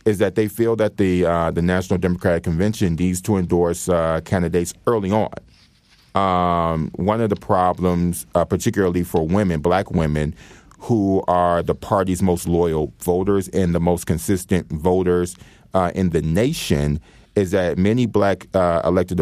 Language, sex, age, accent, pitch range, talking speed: English, male, 30-49, American, 85-100 Hz, 160 wpm